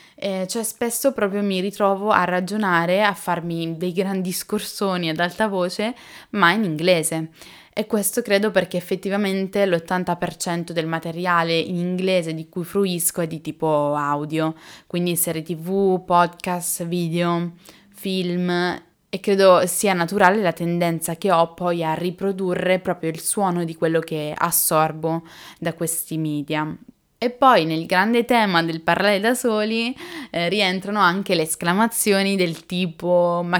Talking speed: 145 wpm